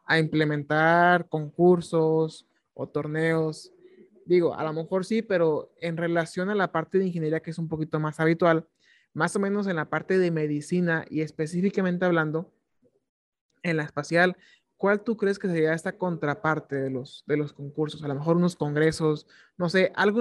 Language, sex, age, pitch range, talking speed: Spanish, male, 20-39, 155-185 Hz, 170 wpm